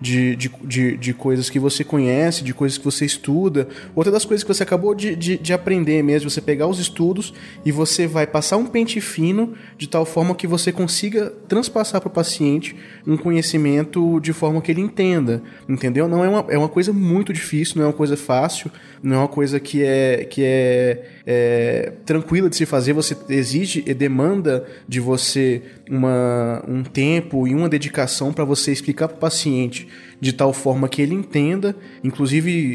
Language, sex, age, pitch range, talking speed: Portuguese, male, 20-39, 135-170 Hz, 180 wpm